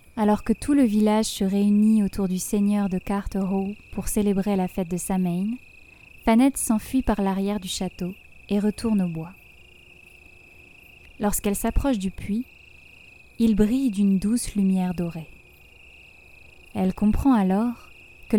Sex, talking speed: female, 135 wpm